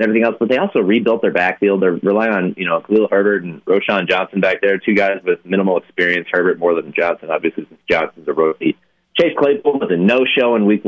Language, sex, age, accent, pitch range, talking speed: English, male, 30-49, American, 95-130 Hz, 225 wpm